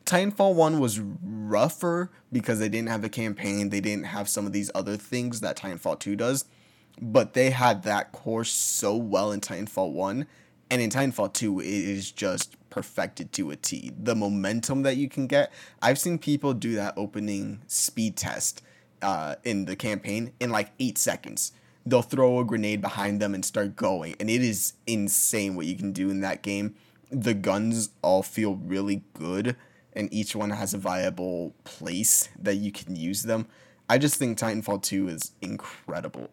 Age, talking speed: 20-39, 180 wpm